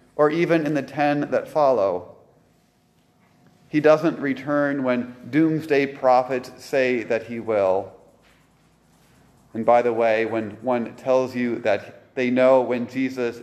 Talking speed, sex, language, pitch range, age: 135 wpm, male, English, 120-165 Hz, 30-49